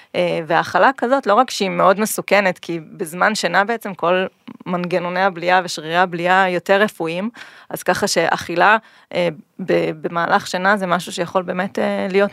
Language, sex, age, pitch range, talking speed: Hebrew, female, 30-49, 170-210 Hz, 135 wpm